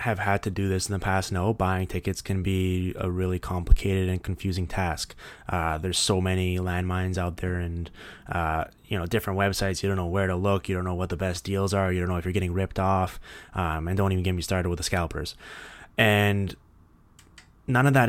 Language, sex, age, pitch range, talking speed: English, male, 20-39, 90-100 Hz, 225 wpm